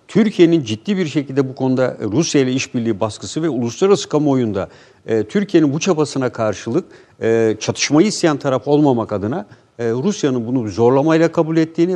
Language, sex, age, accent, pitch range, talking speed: Turkish, male, 60-79, native, 120-155 Hz, 150 wpm